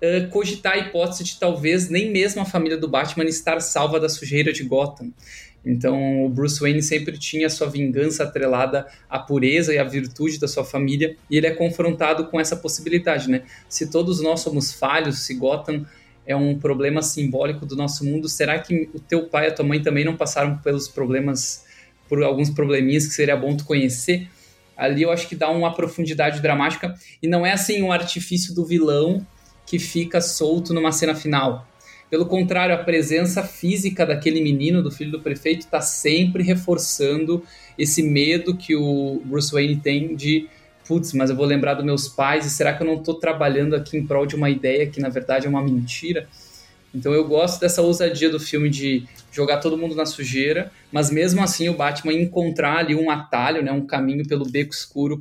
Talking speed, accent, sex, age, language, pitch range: 195 wpm, Brazilian, male, 20-39, Portuguese, 140-165 Hz